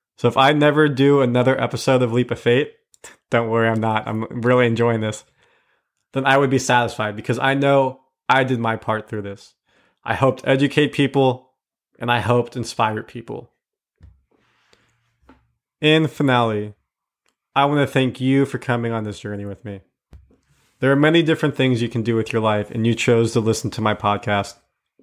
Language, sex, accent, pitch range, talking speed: English, male, American, 110-130 Hz, 180 wpm